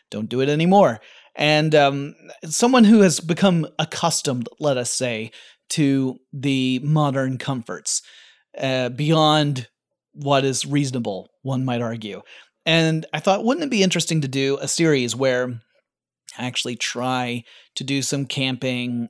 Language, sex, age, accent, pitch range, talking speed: English, male, 30-49, American, 130-175 Hz, 140 wpm